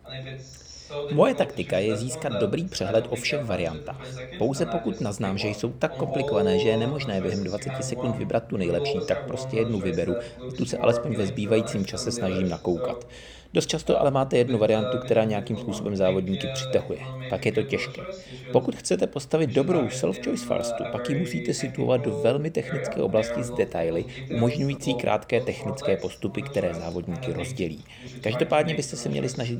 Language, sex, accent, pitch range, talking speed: Czech, male, native, 105-130 Hz, 160 wpm